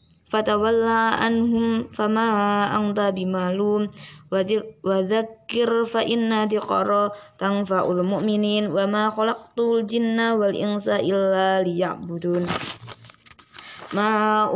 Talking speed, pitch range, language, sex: 105 wpm, 190-220 Hz, Indonesian, female